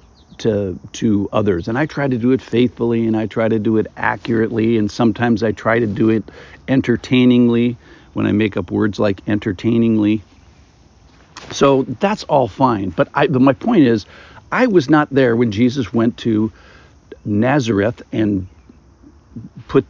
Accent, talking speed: American, 155 wpm